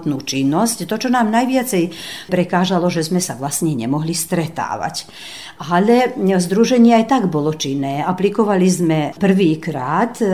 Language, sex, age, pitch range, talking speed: Slovak, female, 50-69, 140-190 Hz, 115 wpm